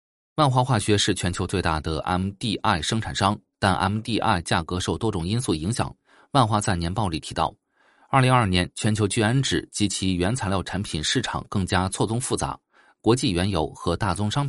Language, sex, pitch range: Chinese, male, 90-115 Hz